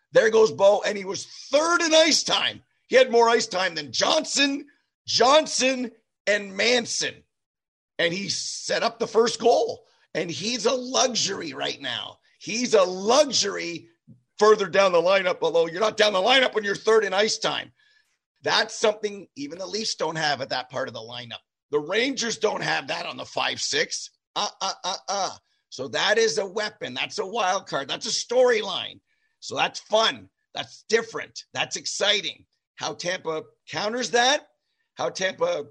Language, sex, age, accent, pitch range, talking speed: English, male, 50-69, American, 205-325 Hz, 165 wpm